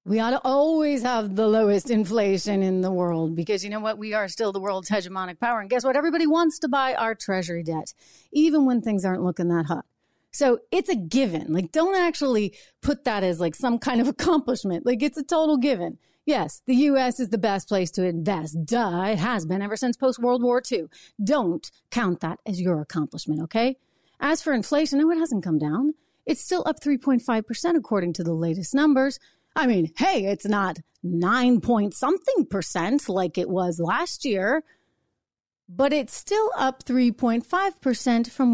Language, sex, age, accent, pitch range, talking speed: English, female, 40-59, American, 190-275 Hz, 190 wpm